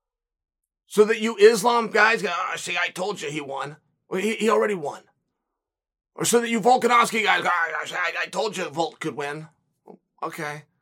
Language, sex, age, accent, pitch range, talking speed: English, male, 30-49, American, 185-270 Hz, 170 wpm